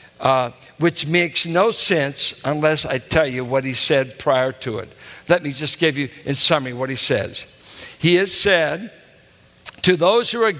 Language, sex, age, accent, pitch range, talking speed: English, male, 60-79, American, 135-170 Hz, 180 wpm